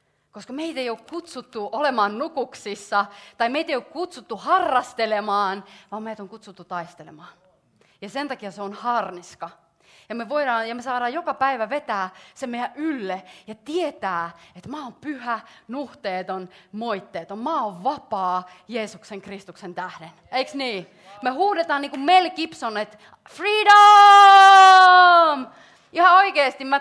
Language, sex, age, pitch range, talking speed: Finnish, female, 30-49, 205-320 Hz, 140 wpm